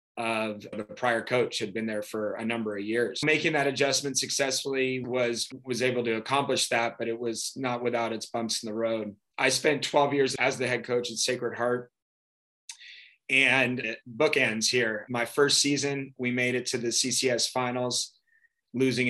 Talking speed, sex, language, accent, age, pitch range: 180 wpm, male, English, American, 20-39, 115-125 Hz